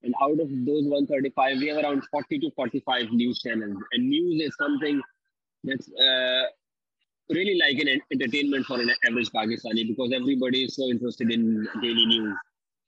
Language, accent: English, Indian